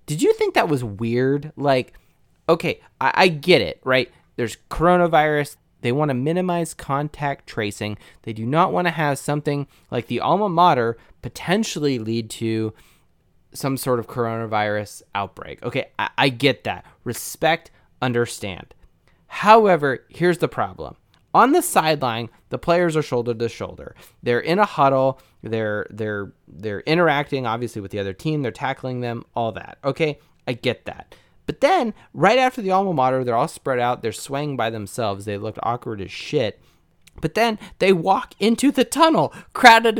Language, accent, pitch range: English, American, 120-175 Hz